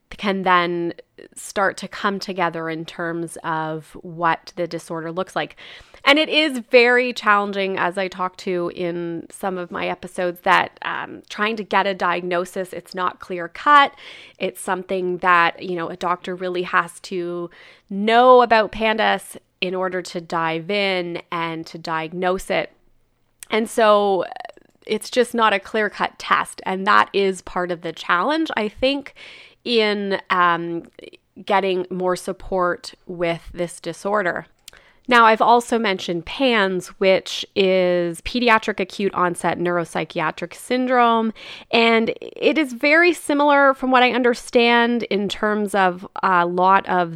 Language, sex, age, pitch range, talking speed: English, female, 20-39, 175-225 Hz, 145 wpm